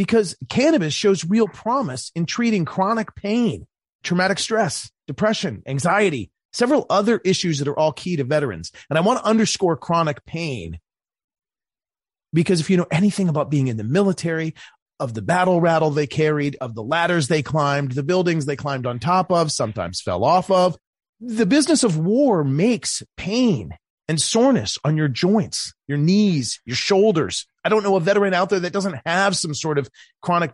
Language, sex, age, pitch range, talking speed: English, male, 30-49, 140-195 Hz, 175 wpm